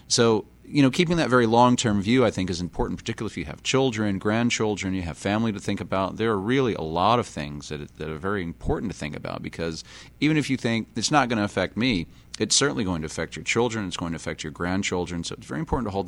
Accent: American